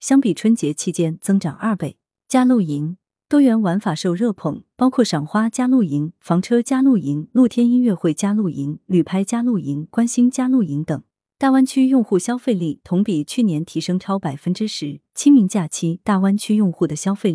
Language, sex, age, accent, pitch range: Chinese, female, 30-49, native, 160-220 Hz